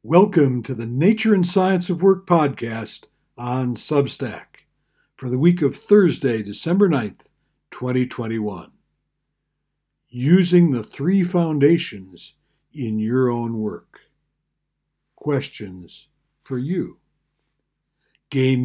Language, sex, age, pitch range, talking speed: English, male, 60-79, 115-155 Hz, 100 wpm